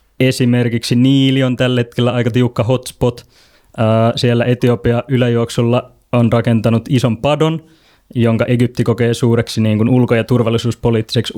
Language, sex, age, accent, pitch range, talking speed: Finnish, male, 20-39, native, 115-130 Hz, 120 wpm